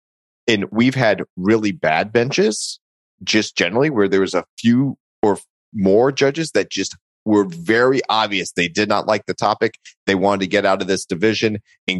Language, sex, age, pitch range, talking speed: English, male, 30-49, 85-105 Hz, 180 wpm